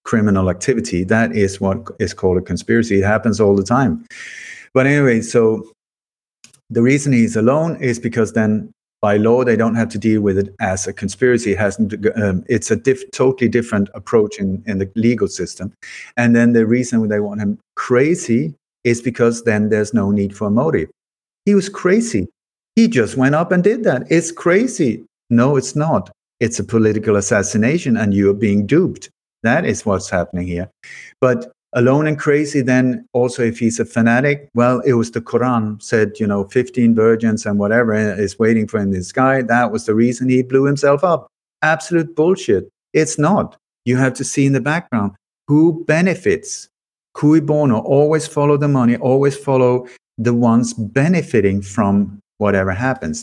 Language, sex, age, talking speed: English, male, 50-69, 175 wpm